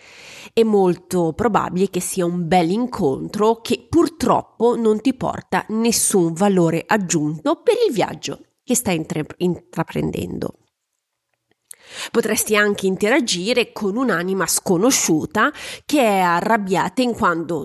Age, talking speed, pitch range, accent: 30-49, 110 wpm, 175-230 Hz, native